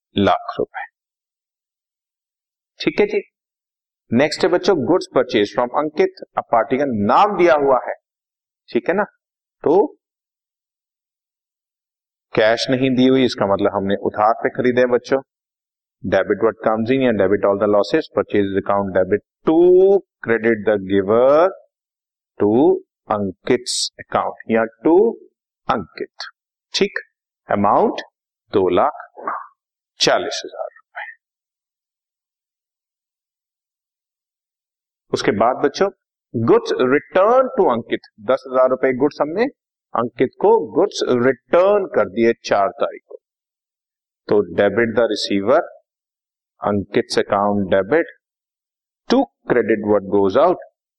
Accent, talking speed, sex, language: native, 105 wpm, male, Hindi